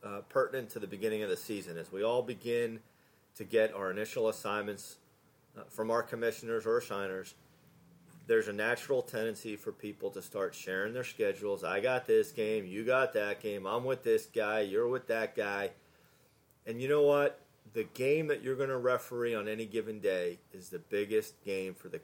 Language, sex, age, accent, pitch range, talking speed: English, male, 40-59, American, 115-155 Hz, 195 wpm